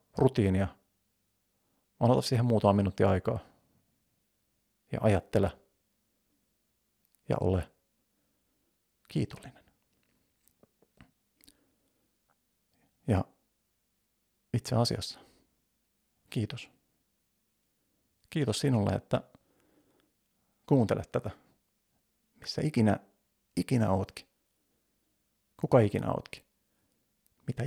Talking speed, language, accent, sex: 60 wpm, Finnish, native, male